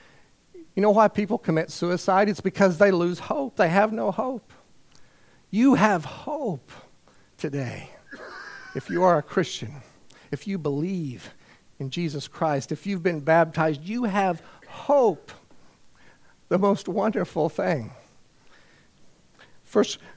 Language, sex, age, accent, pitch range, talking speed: English, male, 50-69, American, 145-200 Hz, 125 wpm